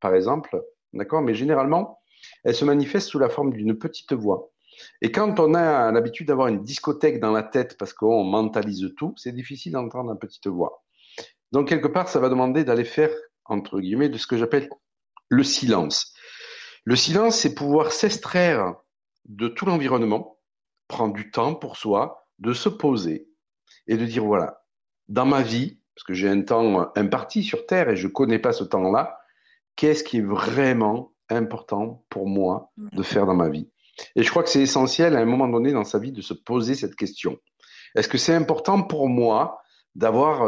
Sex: male